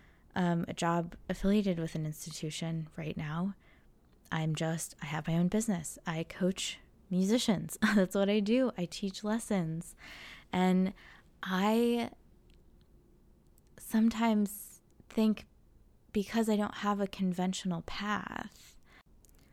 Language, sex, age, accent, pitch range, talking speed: English, female, 20-39, American, 160-210 Hz, 115 wpm